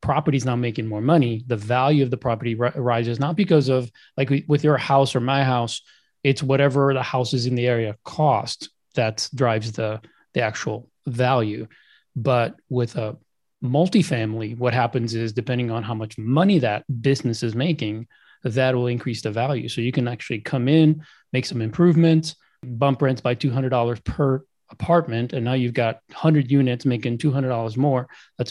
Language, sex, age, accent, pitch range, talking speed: English, male, 30-49, American, 115-140 Hz, 175 wpm